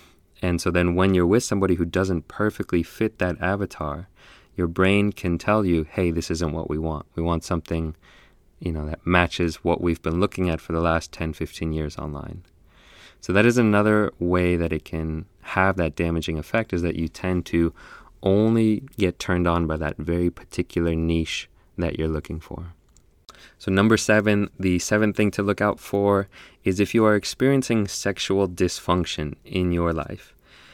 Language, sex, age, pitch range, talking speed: English, male, 20-39, 80-95 Hz, 180 wpm